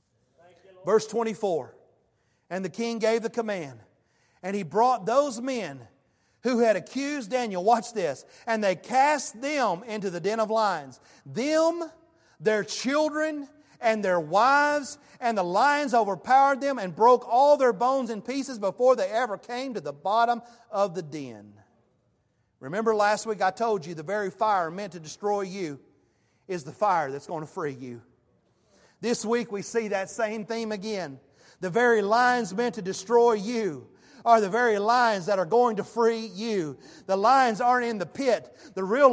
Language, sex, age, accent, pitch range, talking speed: English, male, 40-59, American, 190-255 Hz, 170 wpm